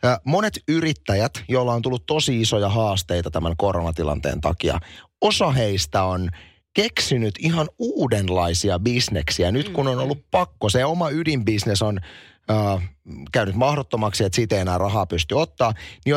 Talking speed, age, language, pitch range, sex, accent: 135 wpm, 30-49, Finnish, 95-140 Hz, male, native